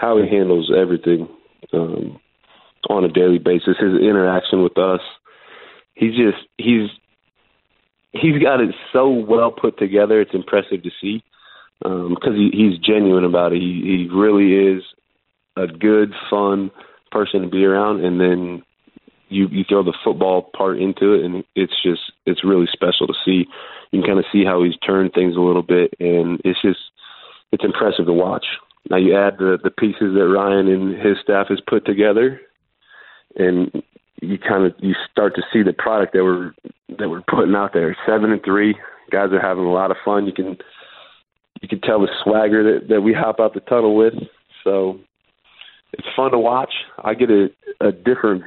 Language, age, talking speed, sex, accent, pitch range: English, 20-39, 185 wpm, male, American, 90-110 Hz